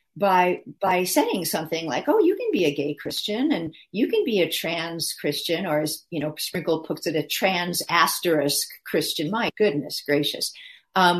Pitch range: 155-210 Hz